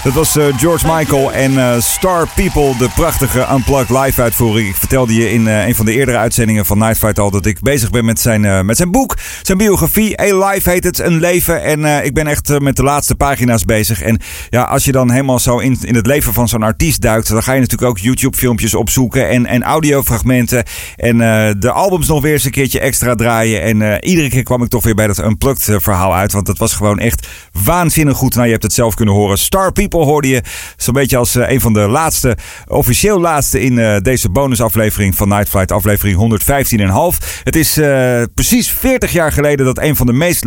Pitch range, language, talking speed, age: 110-145 Hz, Dutch, 220 wpm, 50-69